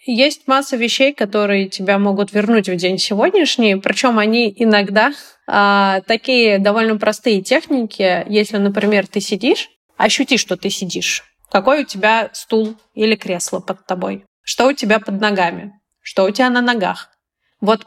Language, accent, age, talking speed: Russian, native, 20-39, 150 wpm